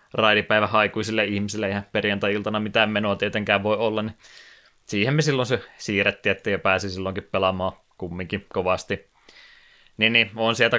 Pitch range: 95-110 Hz